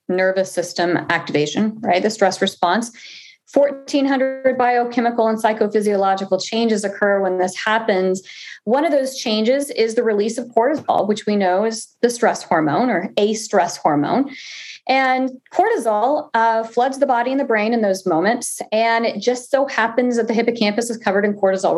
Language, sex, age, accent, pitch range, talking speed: English, female, 30-49, American, 205-260 Hz, 165 wpm